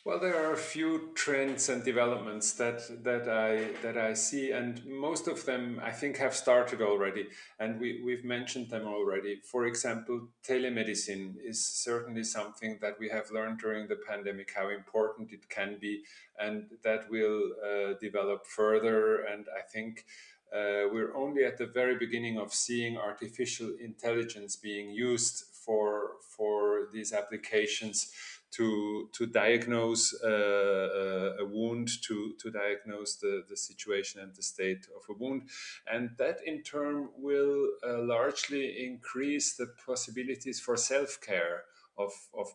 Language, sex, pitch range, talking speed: English, male, 105-125 Hz, 150 wpm